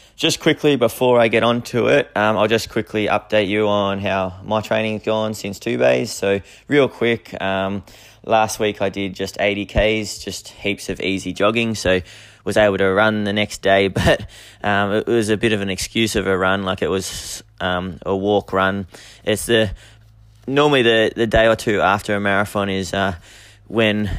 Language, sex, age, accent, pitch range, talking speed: English, male, 20-39, Australian, 95-110 Hz, 195 wpm